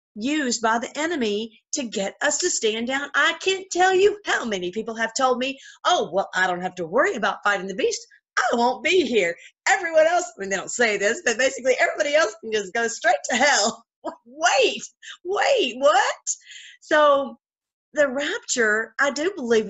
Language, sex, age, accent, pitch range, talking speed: English, female, 40-59, American, 215-265 Hz, 190 wpm